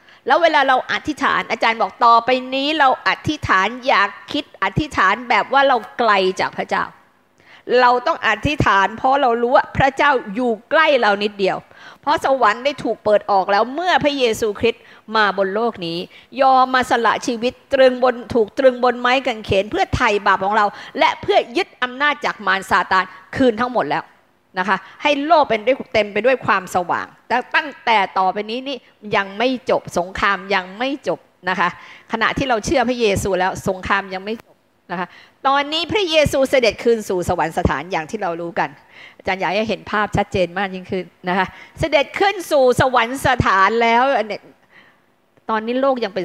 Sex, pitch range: female, 195-265 Hz